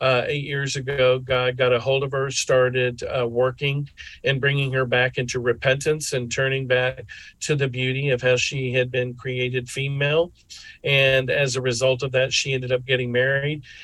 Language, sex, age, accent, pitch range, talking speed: English, male, 40-59, American, 130-155 Hz, 185 wpm